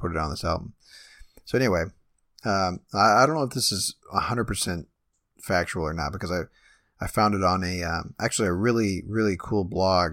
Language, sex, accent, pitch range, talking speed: English, male, American, 85-105 Hz, 195 wpm